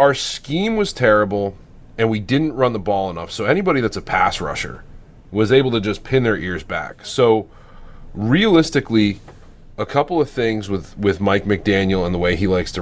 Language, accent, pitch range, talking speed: English, American, 95-120 Hz, 190 wpm